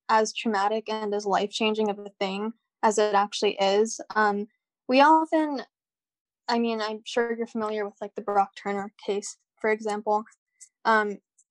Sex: female